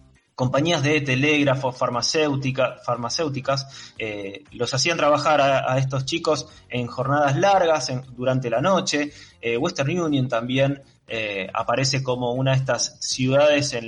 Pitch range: 120-155 Hz